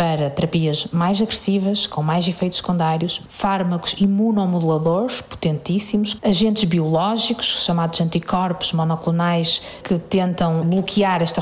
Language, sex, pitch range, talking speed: Portuguese, female, 170-210 Hz, 105 wpm